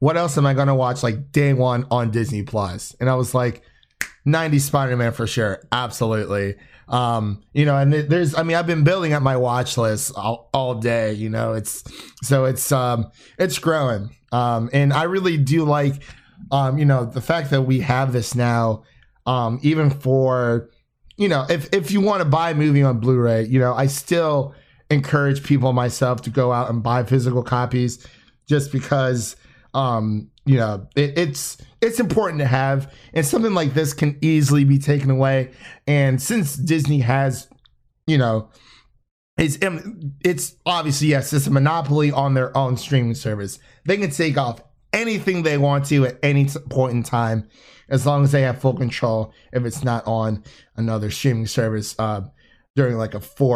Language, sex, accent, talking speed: English, male, American, 185 wpm